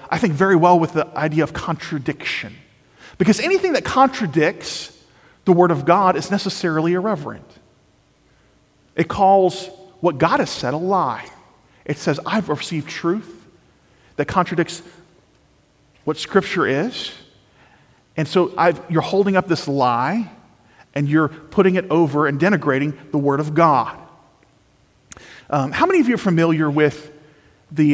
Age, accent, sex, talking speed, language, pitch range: 40-59, American, male, 140 wpm, English, 150-185 Hz